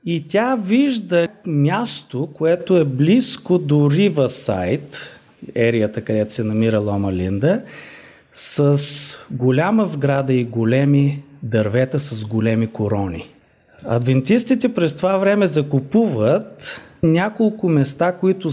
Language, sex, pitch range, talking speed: Bulgarian, male, 125-180 Hz, 105 wpm